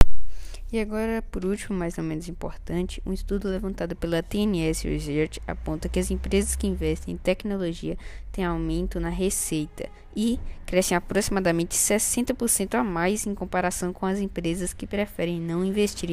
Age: 10-29